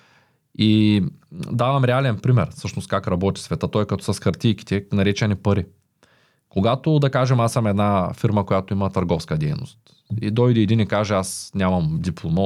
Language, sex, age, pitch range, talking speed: Bulgarian, male, 20-39, 100-145 Hz, 165 wpm